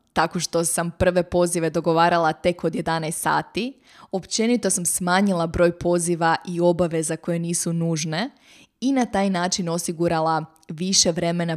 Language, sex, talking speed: Croatian, female, 145 wpm